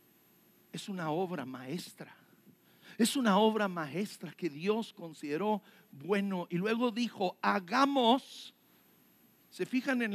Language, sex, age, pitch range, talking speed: English, male, 50-69, 175-240 Hz, 110 wpm